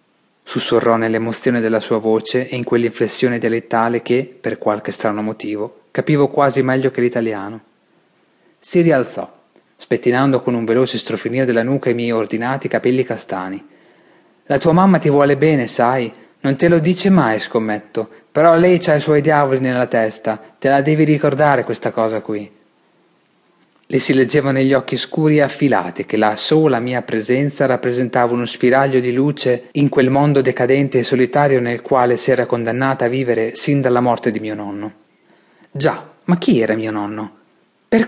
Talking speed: 165 wpm